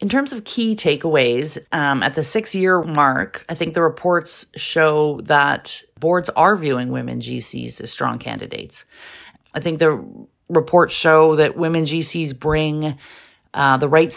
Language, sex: English, female